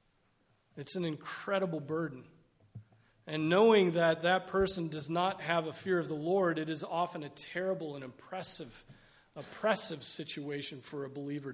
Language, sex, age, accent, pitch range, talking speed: English, male, 40-59, American, 145-190 Hz, 150 wpm